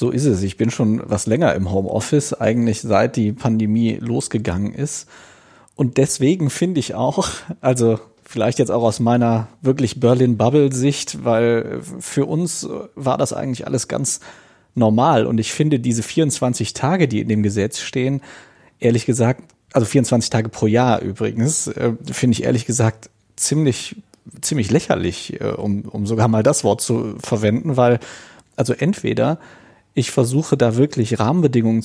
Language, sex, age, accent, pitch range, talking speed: German, male, 40-59, German, 110-130 Hz, 150 wpm